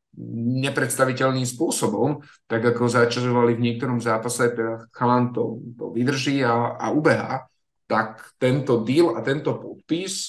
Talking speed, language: 120 wpm, Slovak